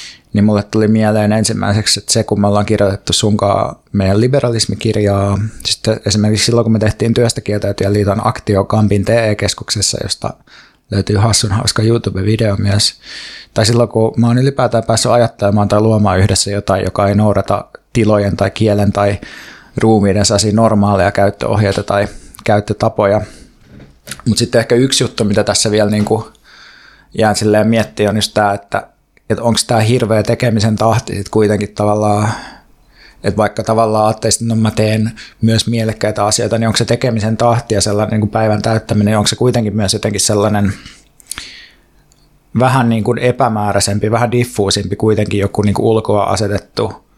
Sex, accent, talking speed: male, native, 155 wpm